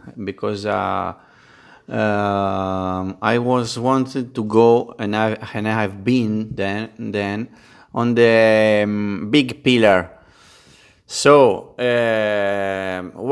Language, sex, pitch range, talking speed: Danish, male, 110-135 Hz, 105 wpm